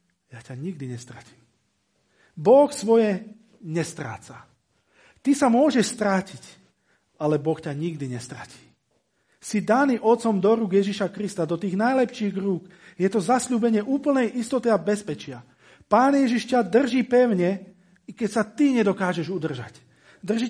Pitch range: 155-225 Hz